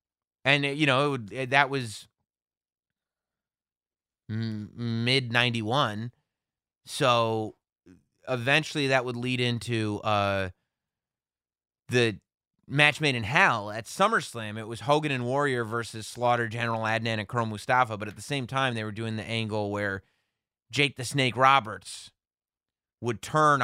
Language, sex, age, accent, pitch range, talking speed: English, male, 30-49, American, 110-140 Hz, 125 wpm